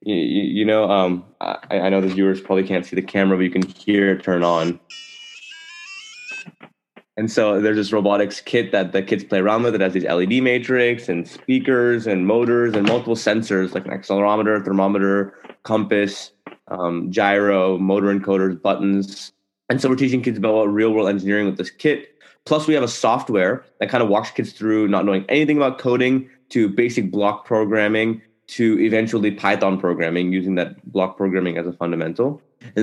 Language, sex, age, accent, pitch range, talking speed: English, male, 20-39, American, 95-110 Hz, 180 wpm